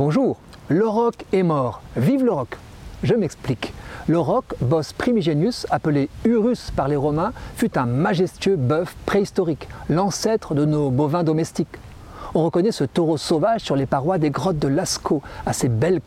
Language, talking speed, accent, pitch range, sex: French, 155 wpm, French, 140-190 Hz, male